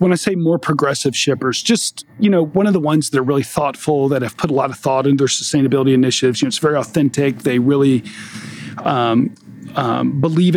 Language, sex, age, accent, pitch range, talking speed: English, male, 40-59, American, 125-160 Hz, 215 wpm